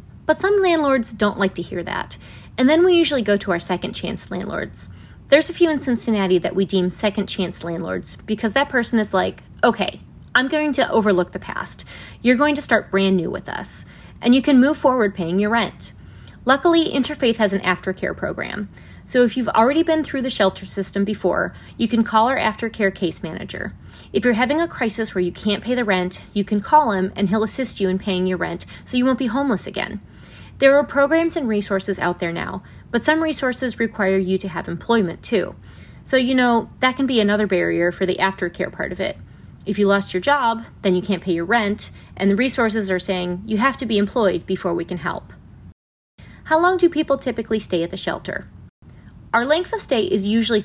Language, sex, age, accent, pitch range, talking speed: English, female, 30-49, American, 190-255 Hz, 215 wpm